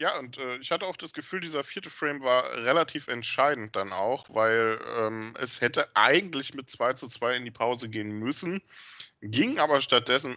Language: German